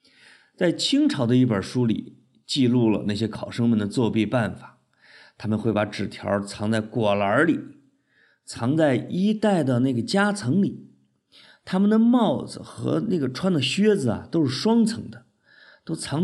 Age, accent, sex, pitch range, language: 50-69, native, male, 110-175 Hz, Chinese